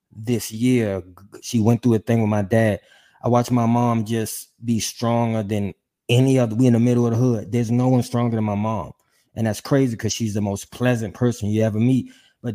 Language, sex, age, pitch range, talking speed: English, male, 20-39, 105-125 Hz, 225 wpm